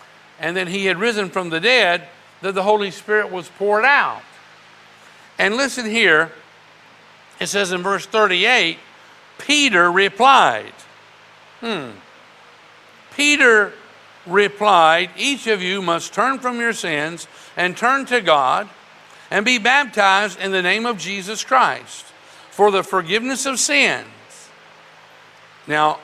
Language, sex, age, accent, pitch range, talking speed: English, male, 50-69, American, 175-215 Hz, 125 wpm